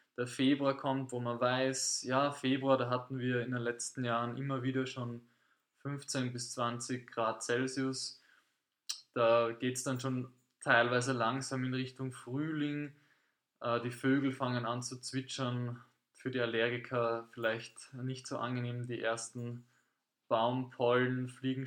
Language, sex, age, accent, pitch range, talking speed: German, male, 20-39, German, 120-130 Hz, 140 wpm